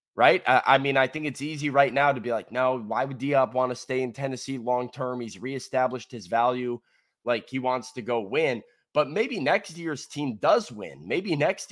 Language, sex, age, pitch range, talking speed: English, male, 20-39, 115-135 Hz, 215 wpm